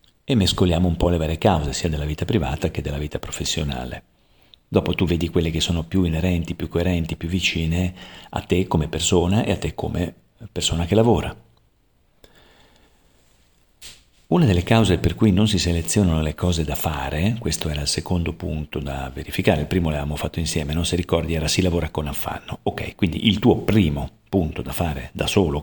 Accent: native